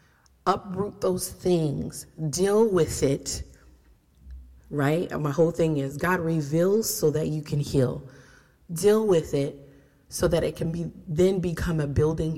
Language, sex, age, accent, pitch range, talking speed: English, female, 30-49, American, 140-170 Hz, 150 wpm